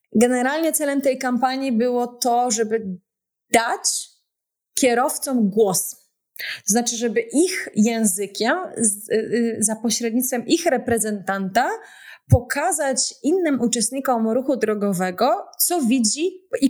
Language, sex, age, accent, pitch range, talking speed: Polish, female, 20-39, native, 215-265 Hz, 95 wpm